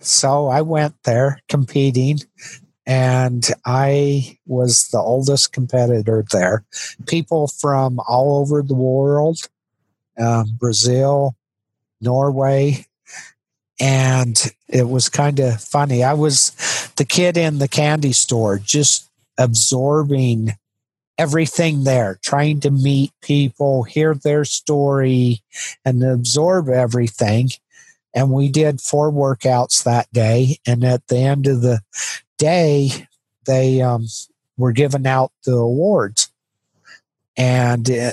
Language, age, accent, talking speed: English, 50-69, American, 110 wpm